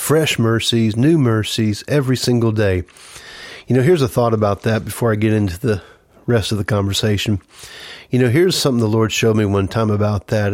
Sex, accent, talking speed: male, American, 200 wpm